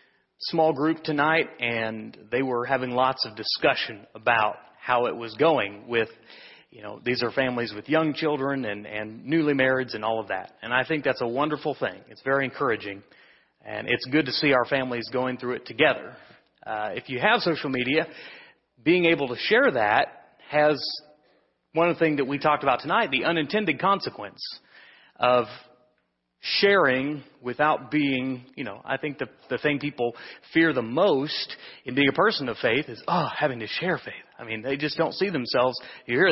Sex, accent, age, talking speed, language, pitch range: male, American, 30-49, 185 wpm, English, 115-150 Hz